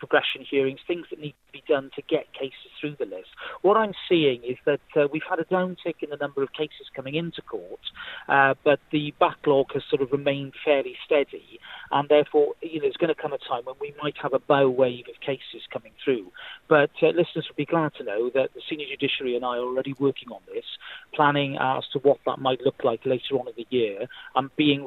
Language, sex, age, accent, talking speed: English, male, 40-59, British, 235 wpm